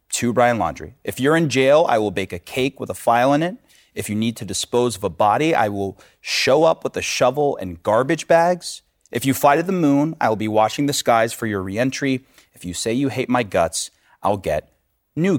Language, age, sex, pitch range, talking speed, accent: English, 30-49, male, 100-140 Hz, 235 wpm, American